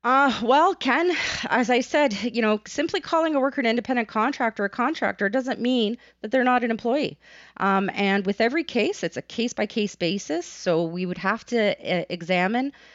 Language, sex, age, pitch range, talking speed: English, female, 30-49, 175-235 Hz, 185 wpm